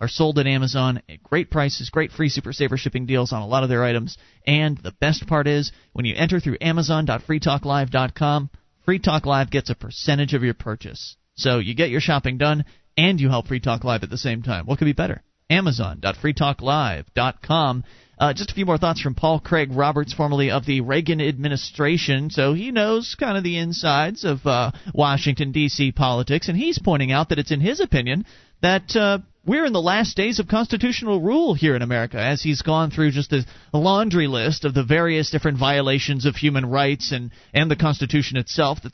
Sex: male